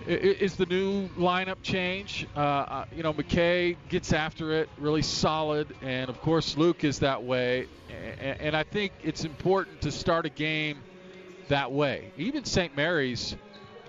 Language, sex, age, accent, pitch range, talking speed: English, male, 40-59, American, 135-160 Hz, 150 wpm